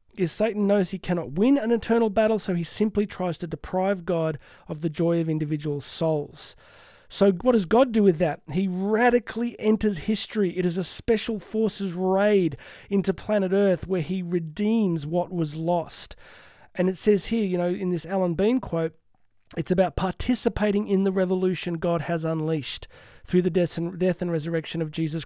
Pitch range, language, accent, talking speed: 170-210 Hz, English, Australian, 180 wpm